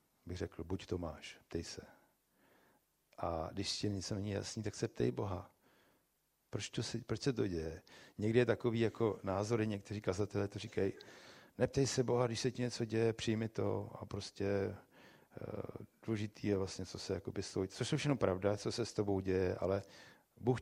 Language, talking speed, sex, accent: Czech, 185 wpm, male, native